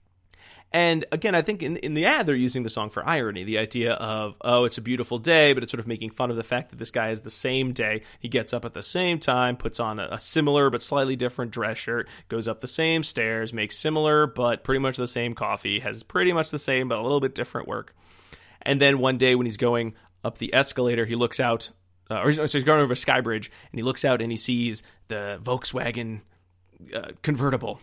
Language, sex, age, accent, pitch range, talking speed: English, male, 20-39, American, 115-135 Hz, 235 wpm